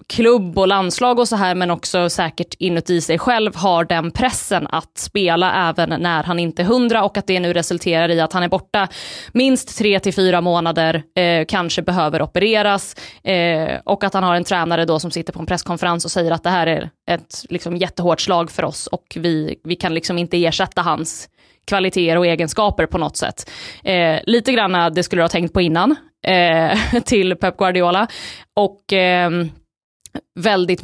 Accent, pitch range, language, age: native, 170-205 Hz, Swedish, 20-39